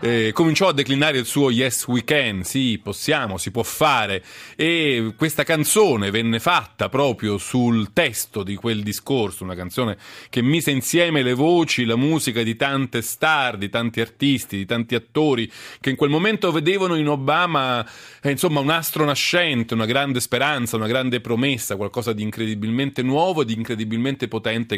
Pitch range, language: 105-145 Hz, Italian